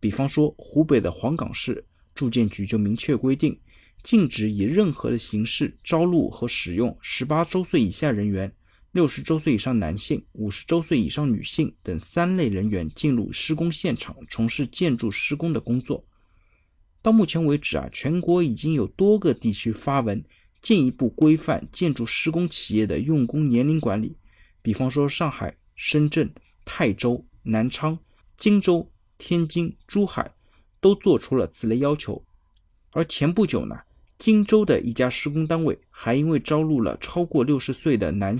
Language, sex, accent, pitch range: Chinese, male, native, 110-160 Hz